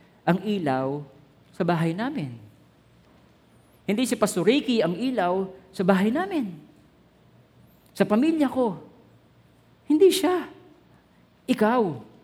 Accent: native